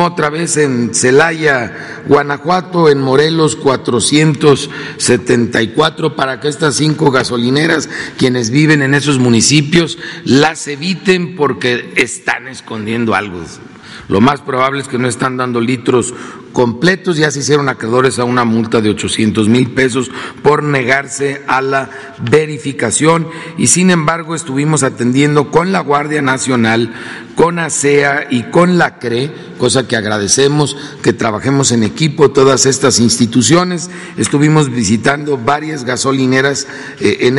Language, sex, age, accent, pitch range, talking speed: Spanish, male, 50-69, Mexican, 125-150 Hz, 130 wpm